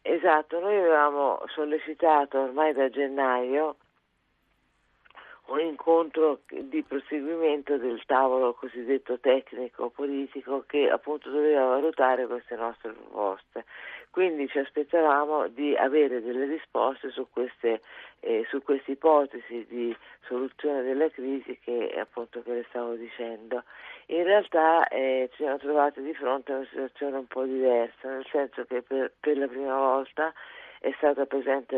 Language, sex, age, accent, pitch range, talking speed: Italian, female, 50-69, native, 125-155 Hz, 135 wpm